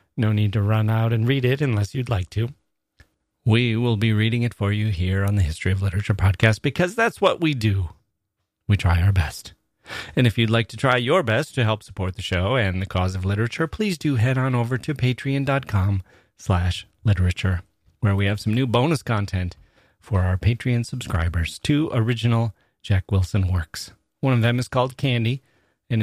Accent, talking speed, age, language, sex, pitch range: American, 195 wpm, 30-49, English, male, 100-130 Hz